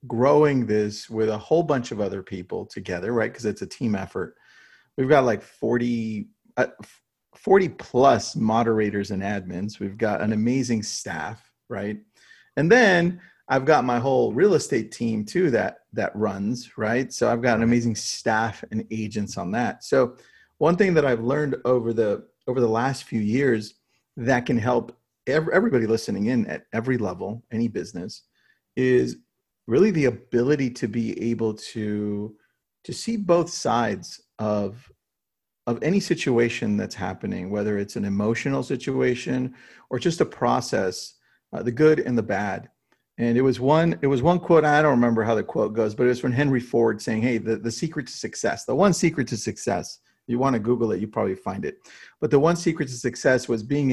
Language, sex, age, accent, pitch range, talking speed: English, male, 30-49, American, 110-135 Hz, 180 wpm